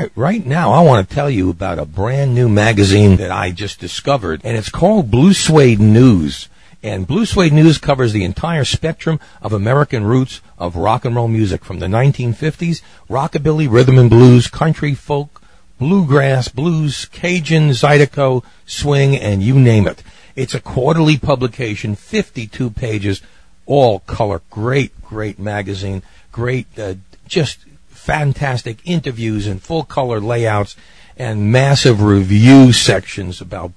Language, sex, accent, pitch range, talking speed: English, male, American, 100-135 Hz, 140 wpm